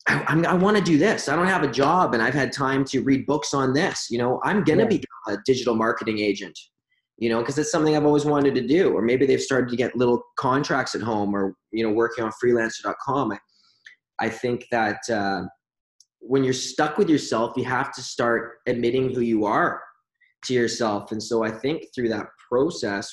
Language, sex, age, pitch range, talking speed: English, male, 20-39, 110-135 Hz, 215 wpm